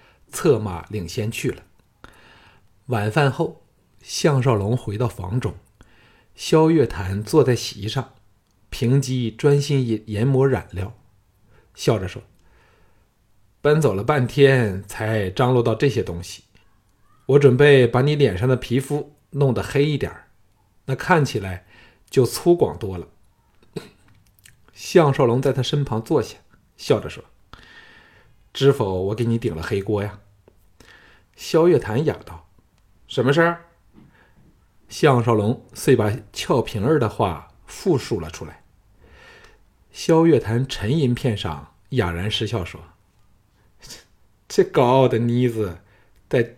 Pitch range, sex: 100-130 Hz, male